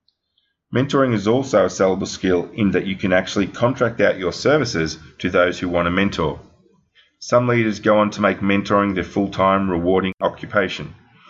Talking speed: 170 wpm